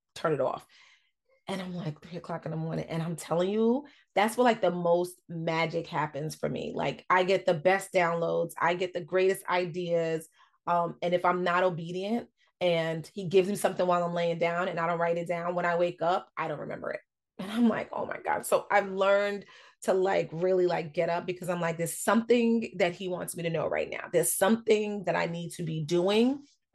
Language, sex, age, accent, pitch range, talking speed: English, female, 30-49, American, 165-195 Hz, 225 wpm